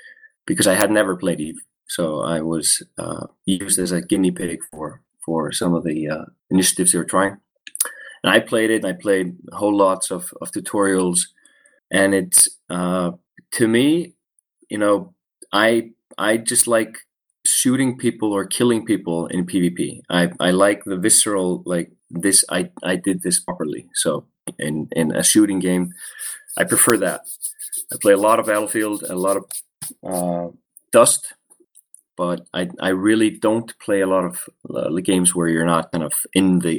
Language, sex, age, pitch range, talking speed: English, male, 30-49, 90-105 Hz, 175 wpm